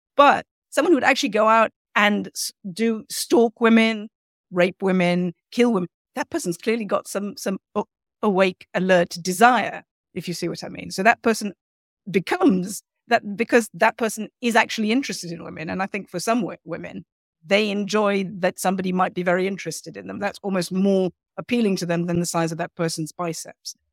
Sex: female